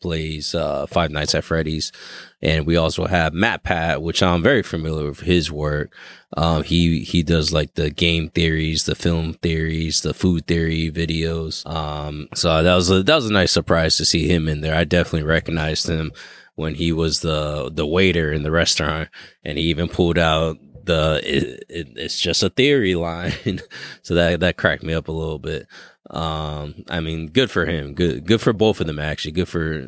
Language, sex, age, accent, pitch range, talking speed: English, male, 20-39, American, 80-90 Hz, 195 wpm